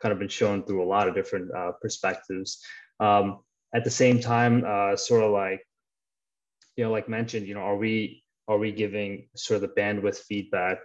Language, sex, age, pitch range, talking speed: English, male, 20-39, 100-125 Hz, 200 wpm